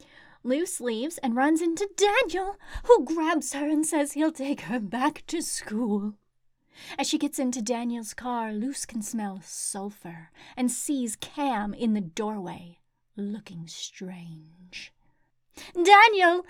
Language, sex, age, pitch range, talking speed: English, female, 30-49, 220-335 Hz, 130 wpm